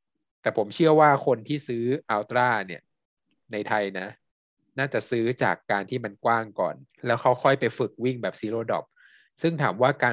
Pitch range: 105-130 Hz